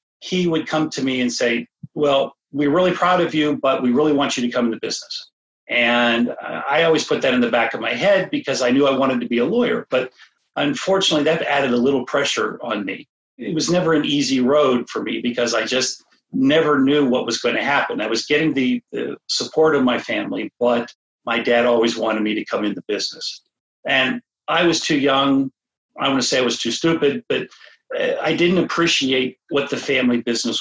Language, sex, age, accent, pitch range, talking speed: English, male, 50-69, American, 120-170 Hz, 215 wpm